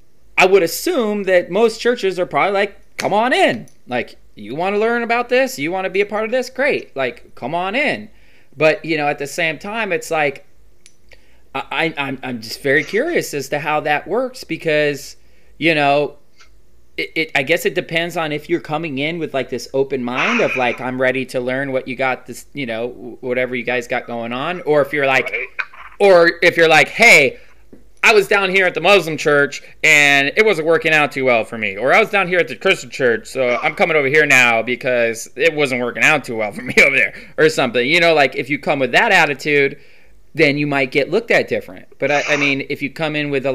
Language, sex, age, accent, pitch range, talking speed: English, male, 20-39, American, 130-170 Hz, 235 wpm